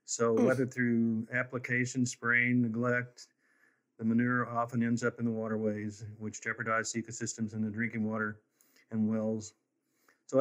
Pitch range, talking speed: 110-125 Hz, 140 wpm